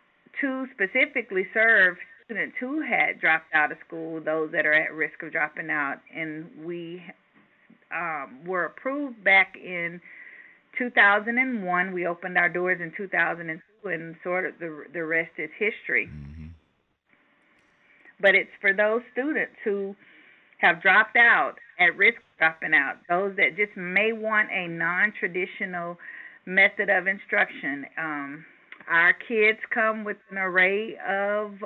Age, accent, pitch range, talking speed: 40-59, American, 175-220 Hz, 140 wpm